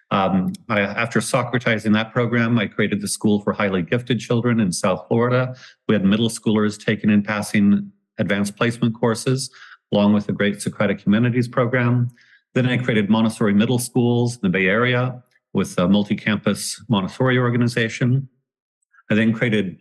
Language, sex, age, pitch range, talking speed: English, male, 40-59, 105-125 Hz, 160 wpm